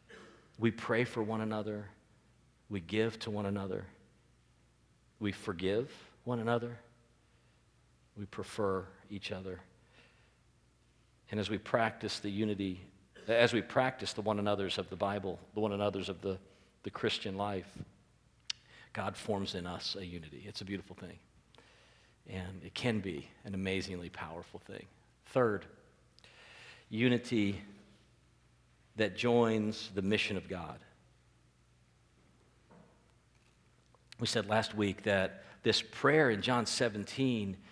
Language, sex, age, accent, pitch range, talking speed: English, male, 50-69, American, 100-120 Hz, 120 wpm